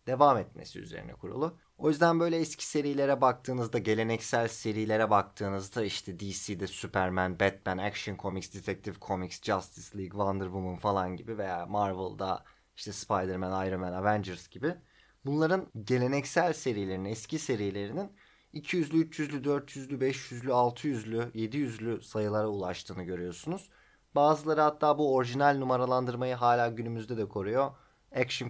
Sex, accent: male, native